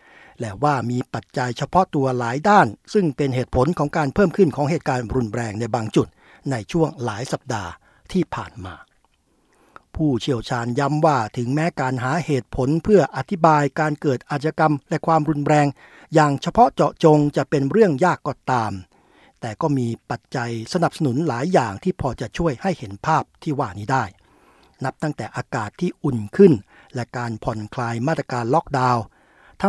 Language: Thai